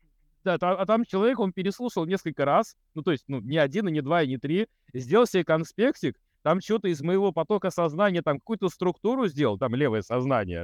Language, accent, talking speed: Russian, native, 210 wpm